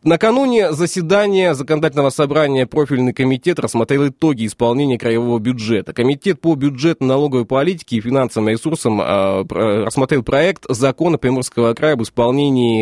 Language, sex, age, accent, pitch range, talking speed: Russian, male, 20-39, native, 115-160 Hz, 115 wpm